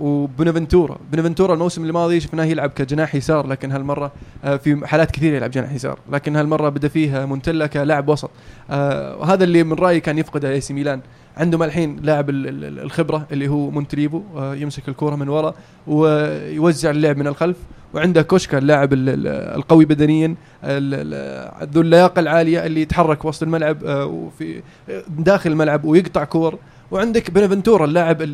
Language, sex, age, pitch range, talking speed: Arabic, male, 20-39, 145-170 Hz, 140 wpm